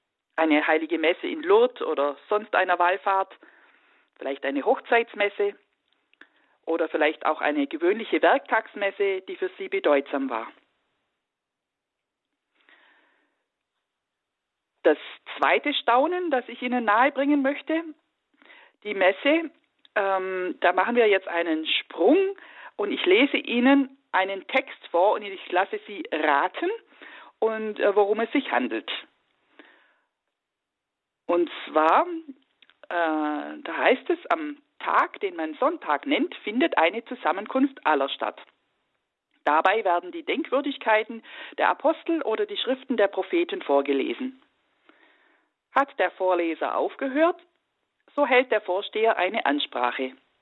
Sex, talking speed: female, 115 wpm